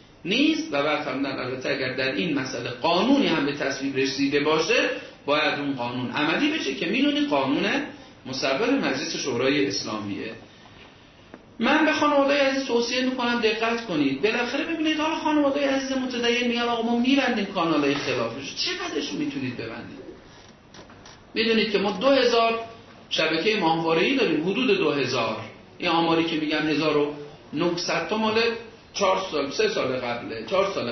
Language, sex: Persian, male